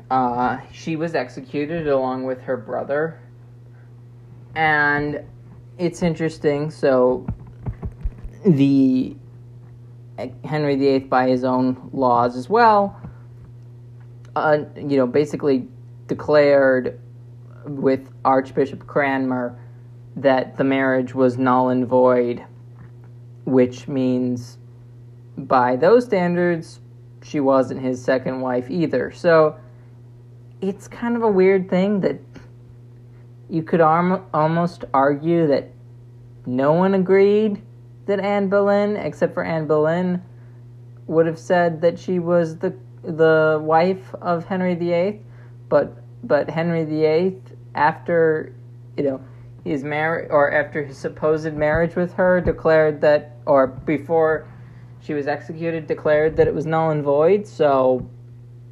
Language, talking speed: English, 115 wpm